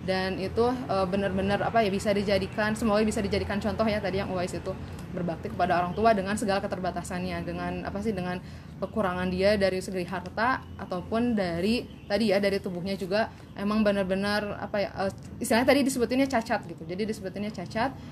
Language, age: Indonesian, 20-39